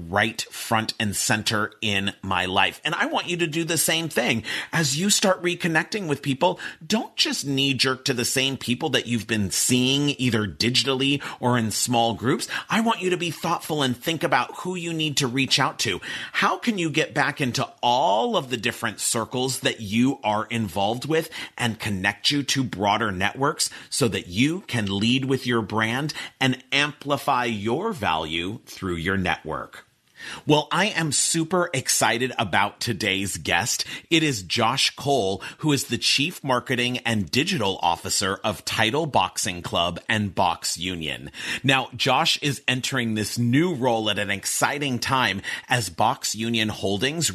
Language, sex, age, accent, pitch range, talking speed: English, male, 40-59, American, 105-145 Hz, 170 wpm